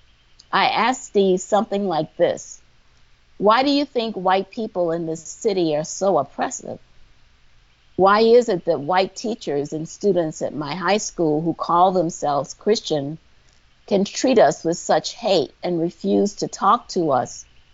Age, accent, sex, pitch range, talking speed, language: 50-69, American, female, 150-195 Hz, 155 wpm, English